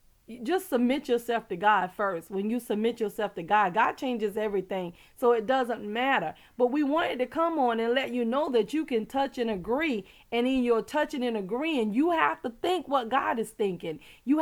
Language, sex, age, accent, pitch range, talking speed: English, female, 30-49, American, 230-295 Hz, 210 wpm